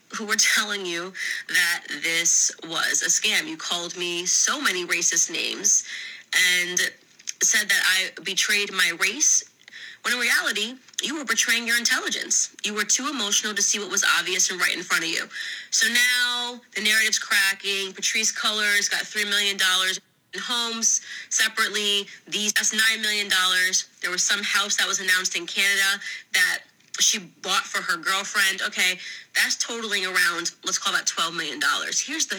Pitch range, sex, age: 185-230 Hz, female, 20-39